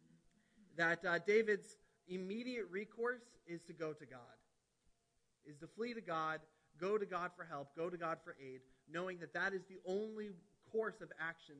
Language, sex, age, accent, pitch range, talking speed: English, male, 30-49, American, 145-190 Hz, 175 wpm